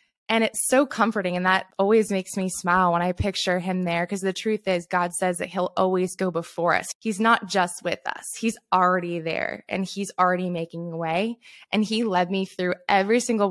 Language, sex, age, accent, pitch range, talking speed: English, female, 20-39, American, 175-200 Hz, 210 wpm